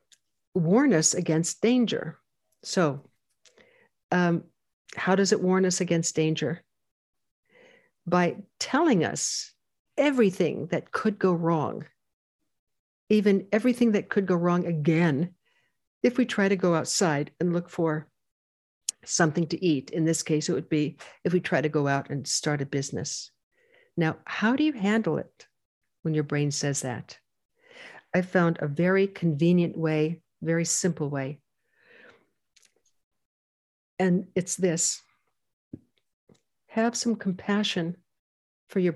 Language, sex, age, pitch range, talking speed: English, female, 60-79, 155-190 Hz, 130 wpm